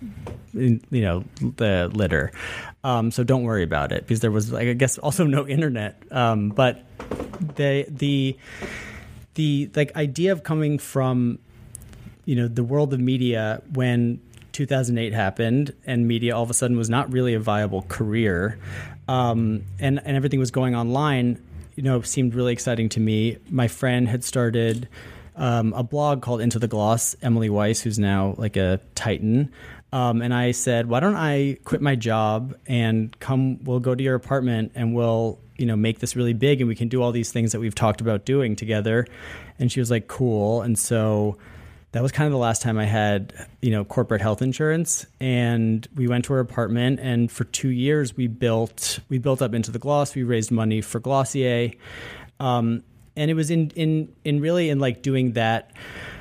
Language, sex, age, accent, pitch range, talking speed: English, male, 30-49, American, 110-130 Hz, 190 wpm